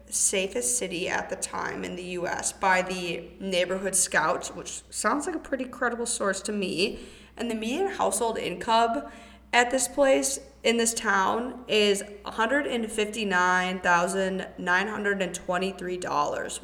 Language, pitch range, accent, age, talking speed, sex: English, 185-240 Hz, American, 20-39, 125 wpm, female